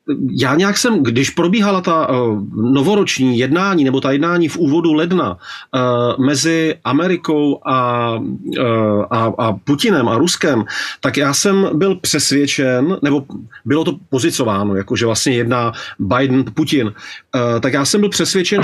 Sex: male